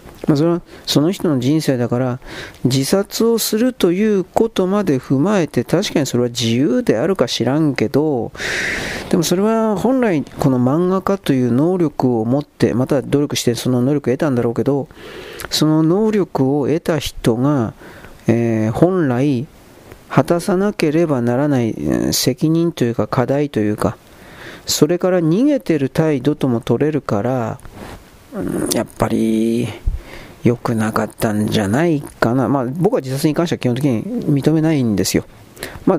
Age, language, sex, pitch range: 40-59, Japanese, male, 120-165 Hz